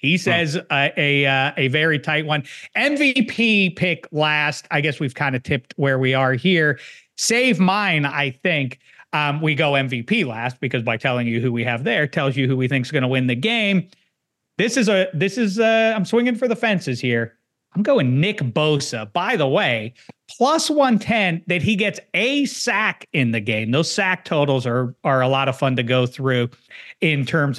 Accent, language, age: American, English, 40-59